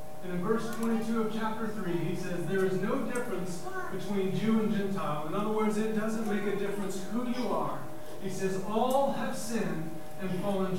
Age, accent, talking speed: 40-59, American, 190 wpm